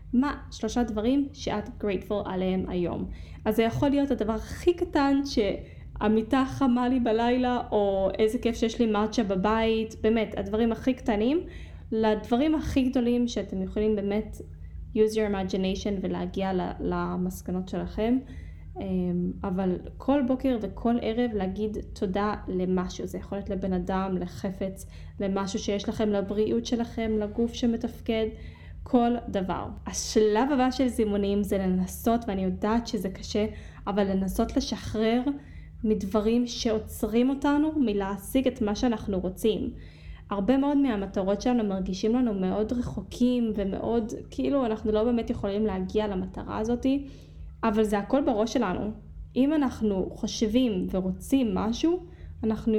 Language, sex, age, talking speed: Hebrew, female, 20-39, 130 wpm